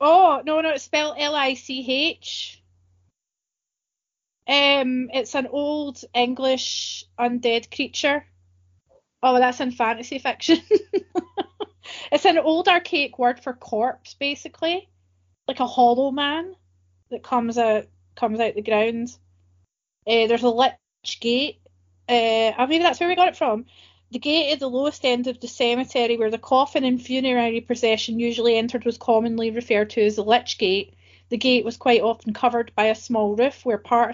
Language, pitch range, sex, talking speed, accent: English, 210-260 Hz, female, 160 wpm, British